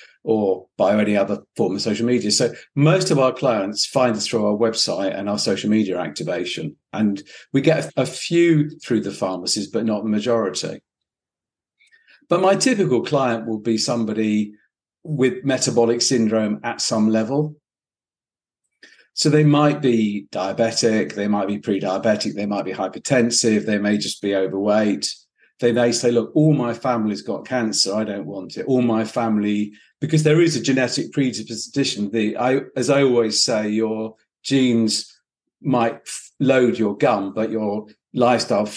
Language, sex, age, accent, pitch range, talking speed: English, male, 40-59, British, 105-140 Hz, 160 wpm